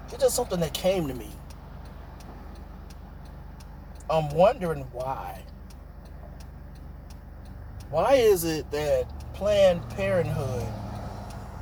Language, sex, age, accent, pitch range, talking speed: English, male, 30-49, American, 85-130 Hz, 85 wpm